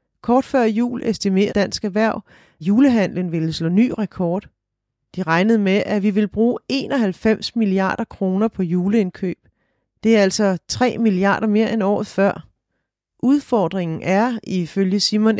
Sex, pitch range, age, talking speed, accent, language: female, 185-225 Hz, 30-49, 140 wpm, native, Danish